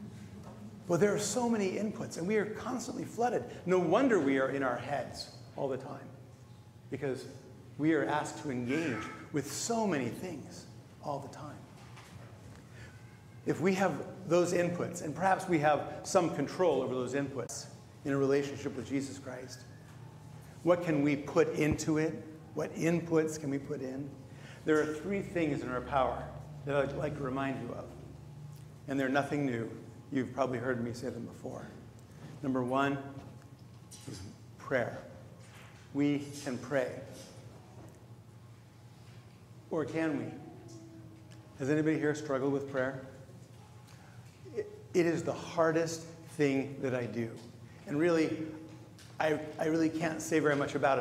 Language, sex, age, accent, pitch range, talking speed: English, male, 40-59, American, 120-150 Hz, 150 wpm